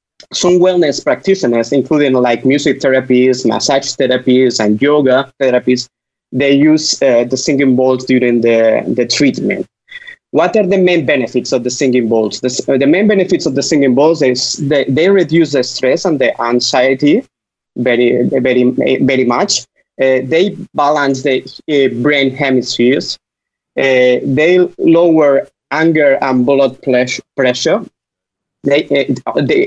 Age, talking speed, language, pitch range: 30-49, 140 wpm, English, 130-155 Hz